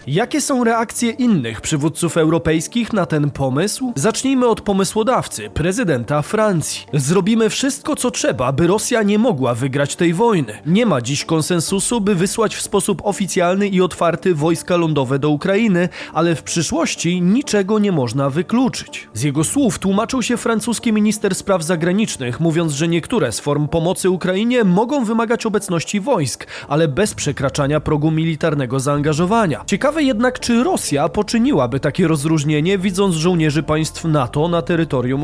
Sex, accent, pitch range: male, native, 155-215 Hz